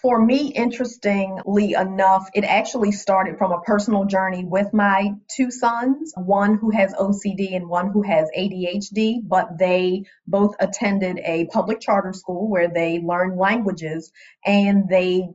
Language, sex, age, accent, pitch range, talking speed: English, female, 30-49, American, 180-210 Hz, 150 wpm